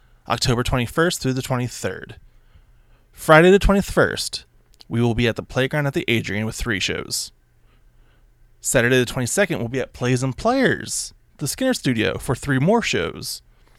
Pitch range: 110-150 Hz